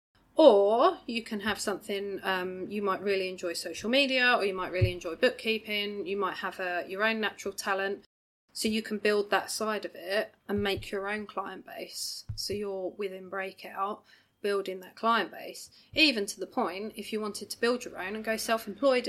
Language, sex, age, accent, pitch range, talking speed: English, female, 30-49, British, 190-220 Hz, 190 wpm